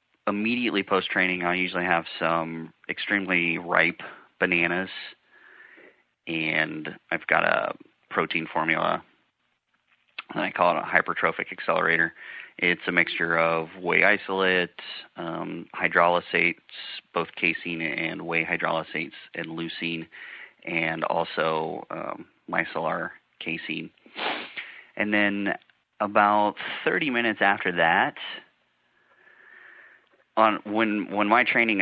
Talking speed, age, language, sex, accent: 100 wpm, 30-49, English, male, American